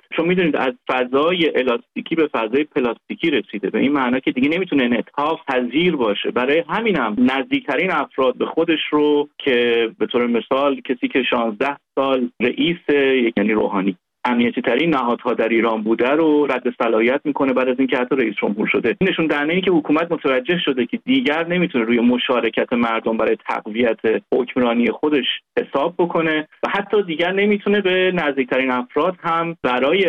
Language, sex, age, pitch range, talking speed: Persian, male, 30-49, 125-170 Hz, 160 wpm